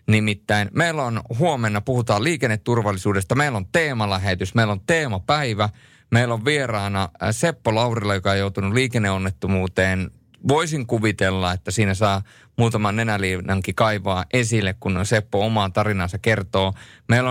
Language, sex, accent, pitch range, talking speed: Finnish, male, native, 95-120 Hz, 125 wpm